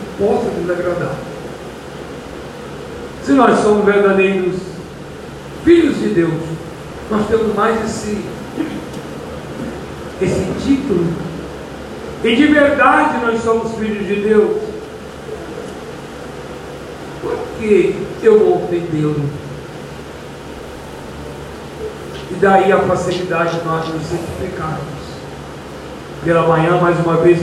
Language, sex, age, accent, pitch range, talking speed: Portuguese, male, 60-79, Brazilian, 165-225 Hz, 85 wpm